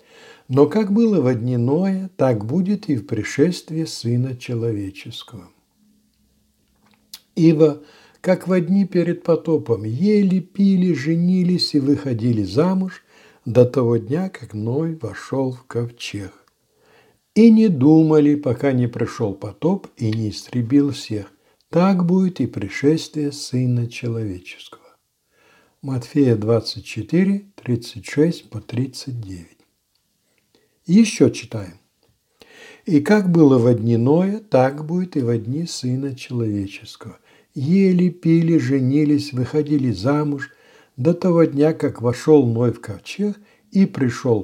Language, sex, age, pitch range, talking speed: Russian, male, 60-79, 120-170 Hz, 110 wpm